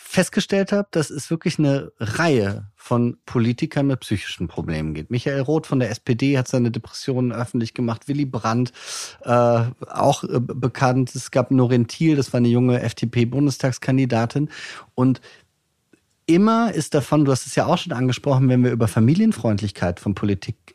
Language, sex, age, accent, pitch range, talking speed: German, male, 30-49, German, 120-160 Hz, 160 wpm